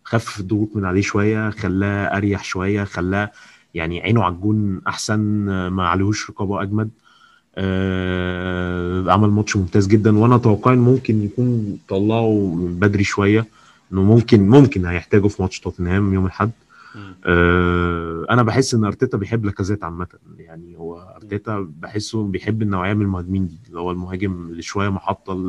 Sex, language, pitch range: male, Arabic, 95-110 Hz